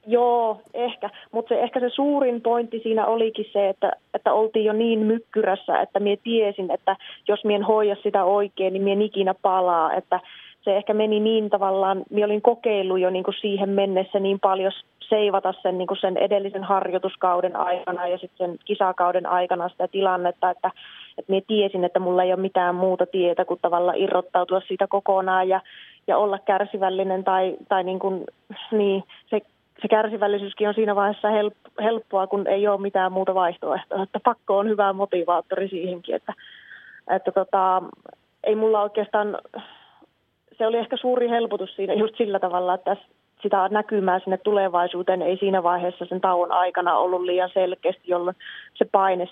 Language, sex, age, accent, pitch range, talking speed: Finnish, female, 30-49, native, 185-210 Hz, 165 wpm